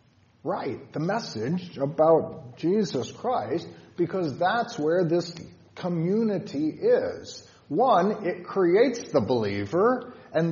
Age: 50-69